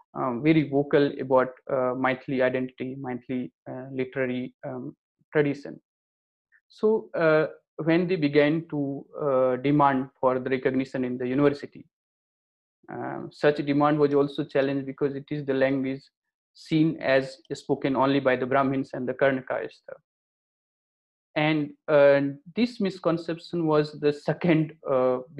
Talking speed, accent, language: 130 wpm, Indian, English